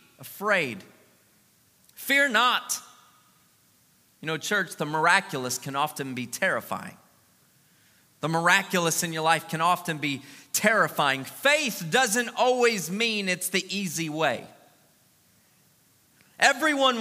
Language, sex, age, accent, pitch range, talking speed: English, male, 40-59, American, 160-230 Hz, 105 wpm